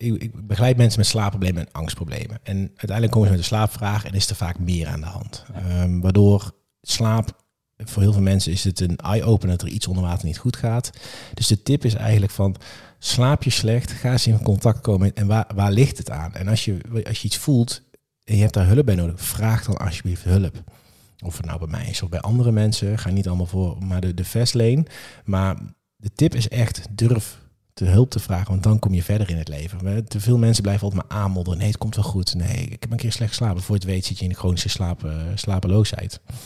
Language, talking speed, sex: Dutch, 235 wpm, male